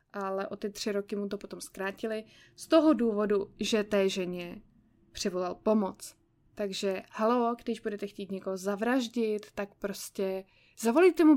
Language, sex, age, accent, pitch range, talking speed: Czech, female, 20-39, native, 200-245 Hz, 150 wpm